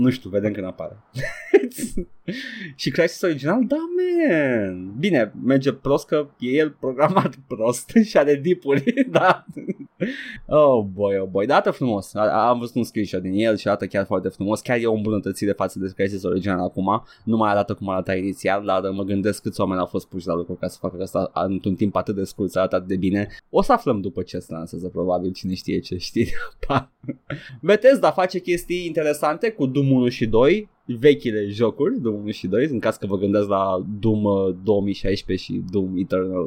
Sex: male